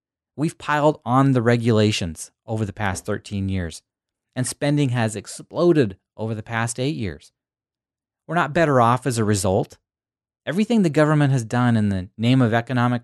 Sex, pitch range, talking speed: male, 110-140 Hz, 165 wpm